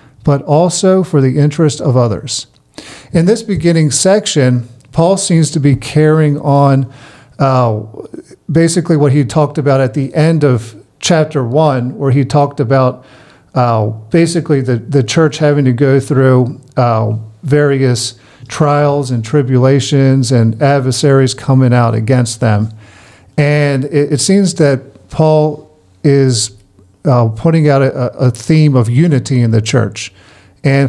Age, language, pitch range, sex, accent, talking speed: 50-69, English, 120-150 Hz, male, American, 140 wpm